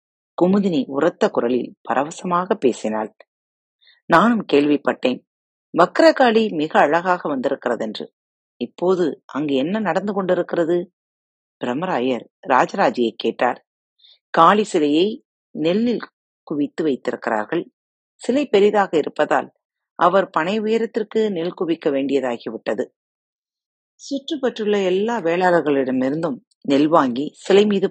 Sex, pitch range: female, 130-205 Hz